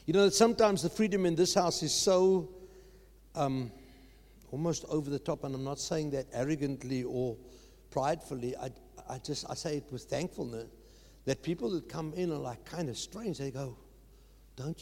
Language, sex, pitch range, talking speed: English, male, 155-200 Hz, 180 wpm